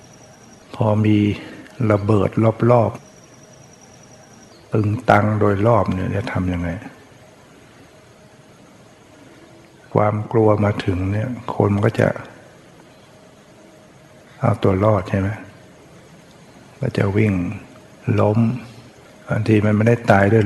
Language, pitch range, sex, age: Thai, 100-115 Hz, male, 60-79